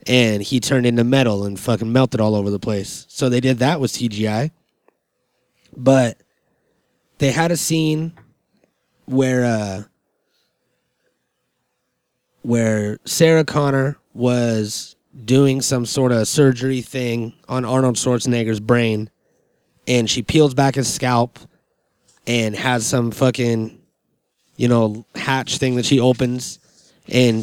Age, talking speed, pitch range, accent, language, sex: 30-49, 125 wpm, 115-135 Hz, American, English, male